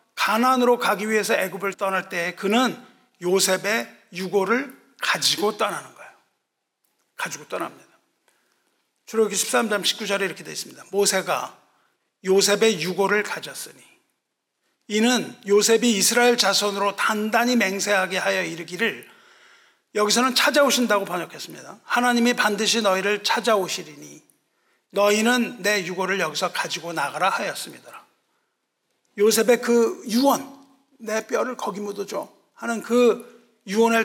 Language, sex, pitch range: Korean, male, 195-235 Hz